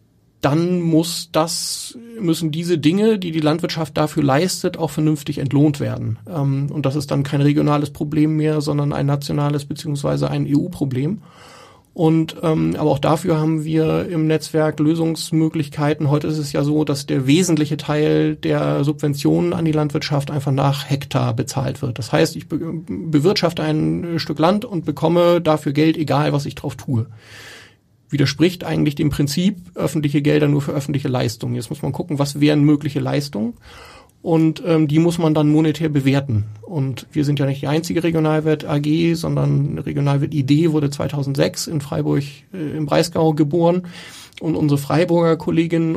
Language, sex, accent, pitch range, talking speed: German, male, German, 145-160 Hz, 160 wpm